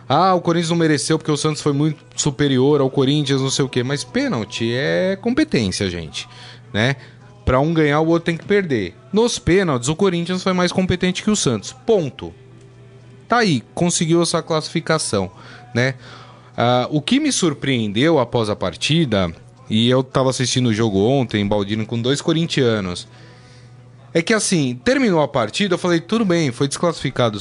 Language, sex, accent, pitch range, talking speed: Portuguese, male, Brazilian, 125-185 Hz, 175 wpm